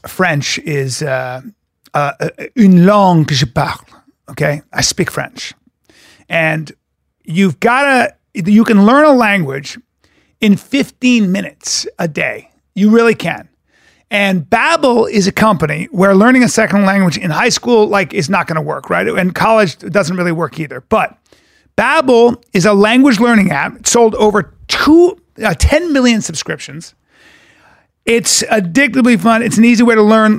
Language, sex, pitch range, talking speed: English, male, 185-230 Hz, 160 wpm